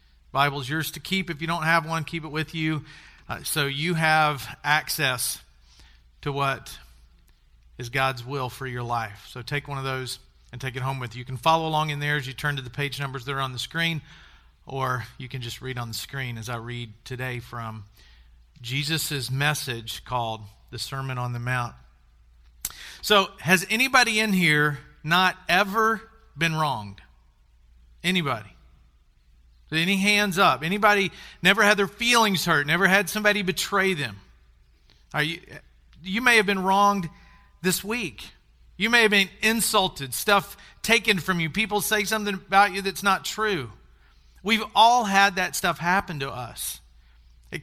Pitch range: 115-190 Hz